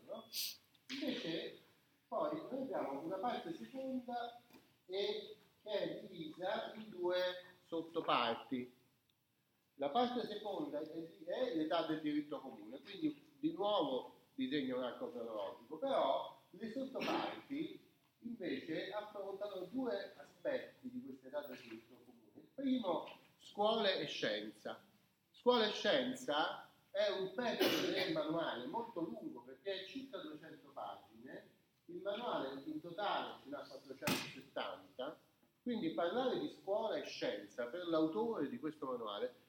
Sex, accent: male, native